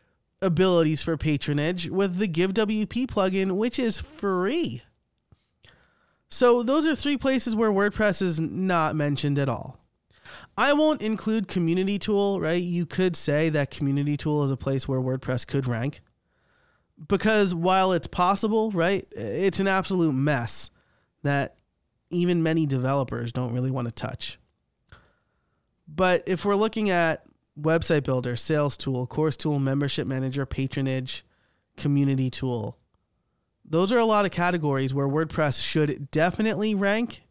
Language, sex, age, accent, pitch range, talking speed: English, male, 20-39, American, 135-190 Hz, 140 wpm